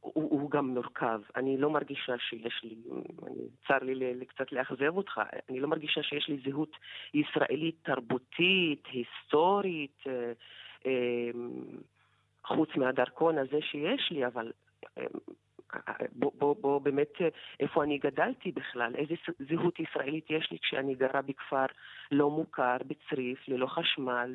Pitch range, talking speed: 135-180 Hz, 135 wpm